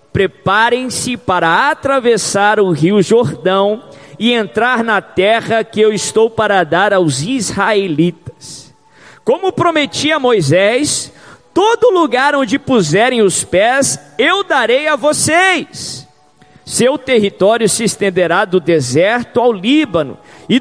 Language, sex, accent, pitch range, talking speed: Portuguese, male, Brazilian, 200-295 Hz, 115 wpm